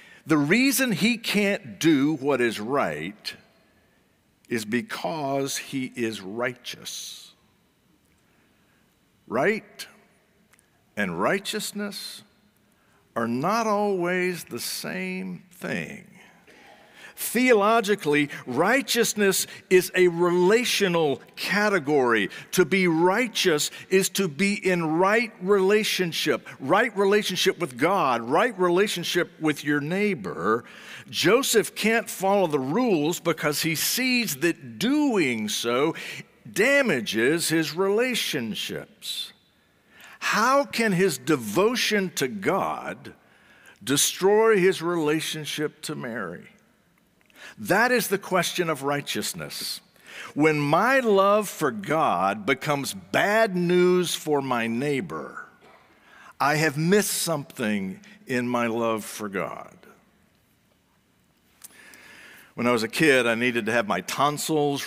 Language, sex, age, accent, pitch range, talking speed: English, male, 60-79, American, 145-205 Hz, 100 wpm